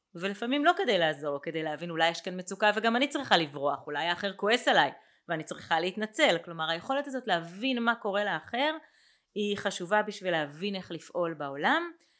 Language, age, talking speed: Hebrew, 30-49, 170 wpm